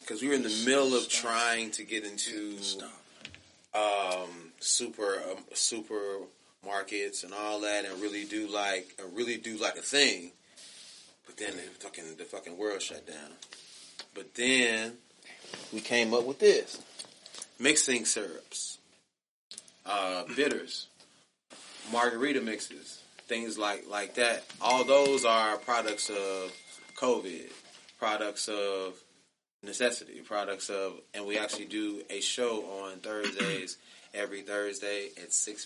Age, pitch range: 30-49, 90-110 Hz